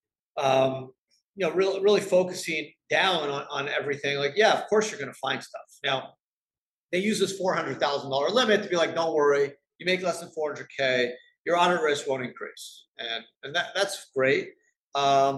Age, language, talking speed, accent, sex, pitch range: 50-69, English, 185 wpm, American, male, 140-200 Hz